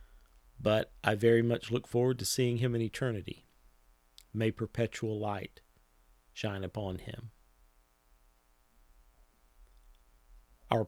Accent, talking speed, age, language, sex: American, 100 wpm, 40-59, English, male